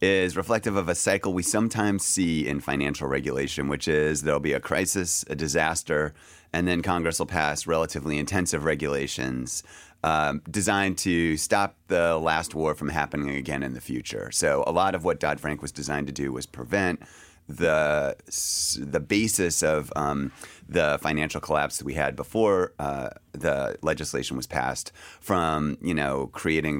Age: 30-49